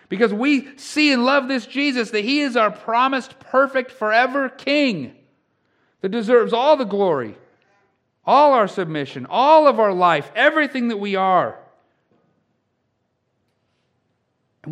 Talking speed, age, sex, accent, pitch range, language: 130 wpm, 50-69, male, American, 120-200 Hz, English